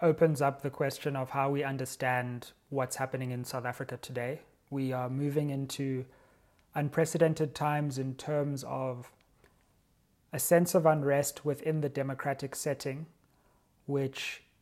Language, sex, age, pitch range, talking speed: English, male, 30-49, 130-155 Hz, 130 wpm